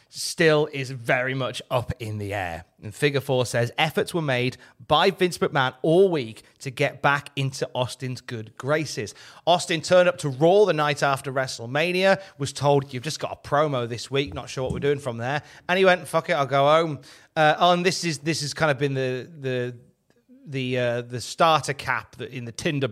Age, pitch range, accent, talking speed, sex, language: 30-49, 125-150 Hz, British, 210 wpm, male, English